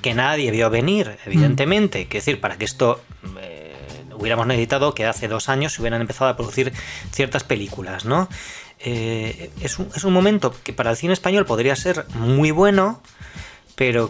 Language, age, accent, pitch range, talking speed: Spanish, 20-39, Spanish, 115-150 Hz, 175 wpm